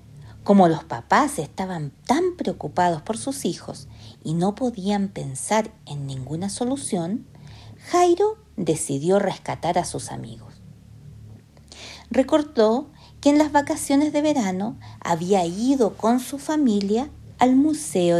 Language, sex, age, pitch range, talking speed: Spanish, female, 50-69, 165-265 Hz, 120 wpm